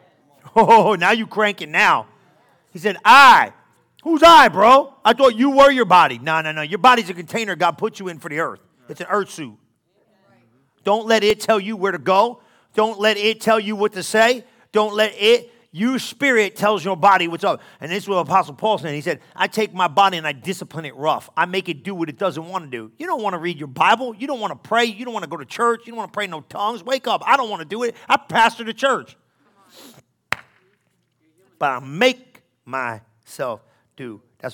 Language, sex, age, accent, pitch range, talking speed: English, male, 40-59, American, 155-230 Hz, 235 wpm